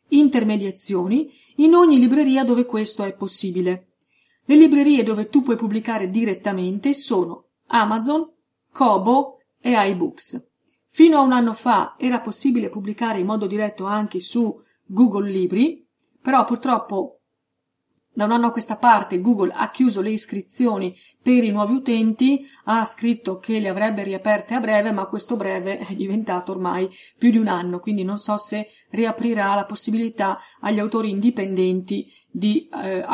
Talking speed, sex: 150 wpm, female